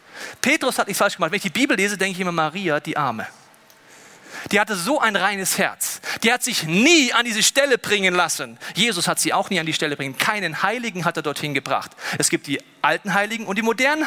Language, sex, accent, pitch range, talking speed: German, male, German, 155-205 Hz, 230 wpm